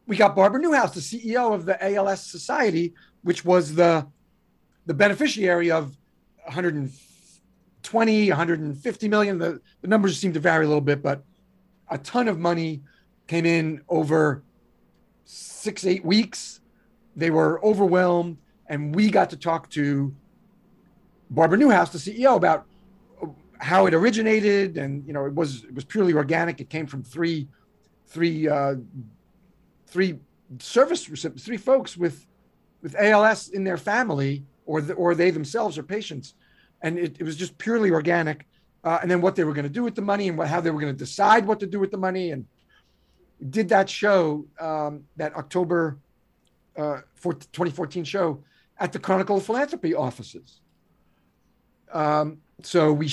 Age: 40-59